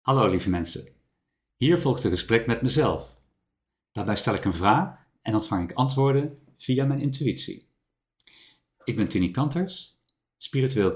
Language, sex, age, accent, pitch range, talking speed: Dutch, male, 50-69, Dutch, 85-130 Hz, 140 wpm